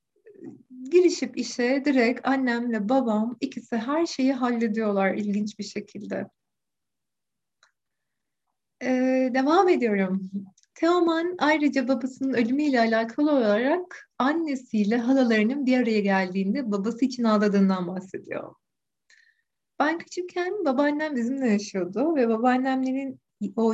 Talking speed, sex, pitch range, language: 95 wpm, female, 210-295 Hz, Turkish